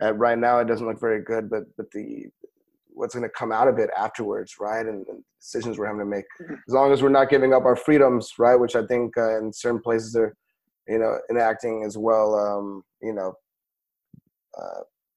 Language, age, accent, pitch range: English, 20-39, American, 110-135 Hz